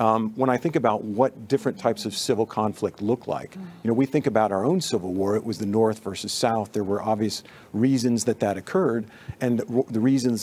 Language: English